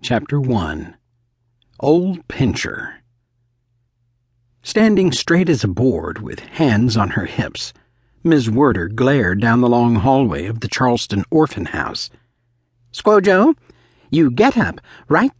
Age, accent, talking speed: 60-79, American, 120 wpm